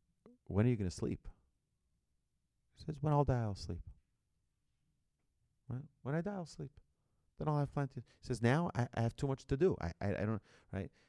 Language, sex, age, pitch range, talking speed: English, male, 40-59, 90-110 Hz, 200 wpm